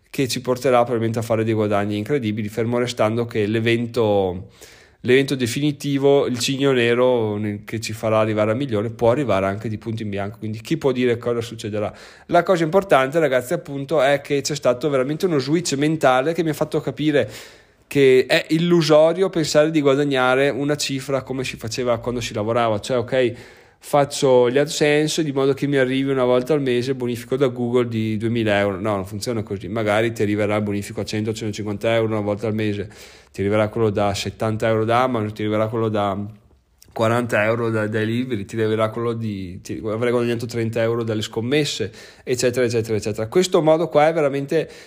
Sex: male